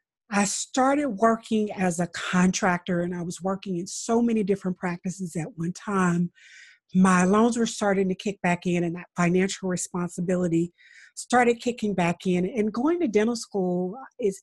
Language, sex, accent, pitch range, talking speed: English, female, American, 180-230 Hz, 165 wpm